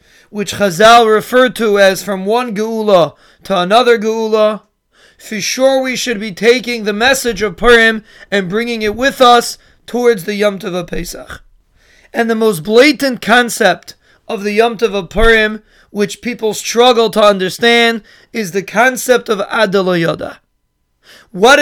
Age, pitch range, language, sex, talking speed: 30-49, 205-235 Hz, English, male, 145 wpm